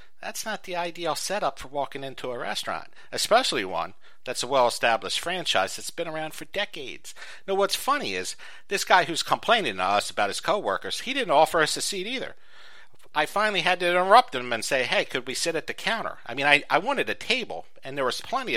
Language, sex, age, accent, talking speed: English, male, 60-79, American, 215 wpm